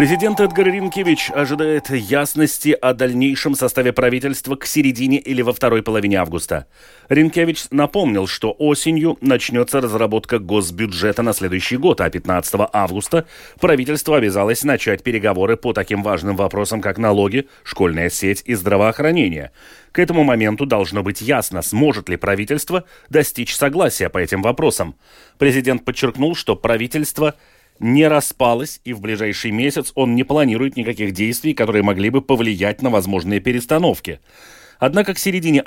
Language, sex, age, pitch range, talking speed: Russian, male, 30-49, 110-150 Hz, 140 wpm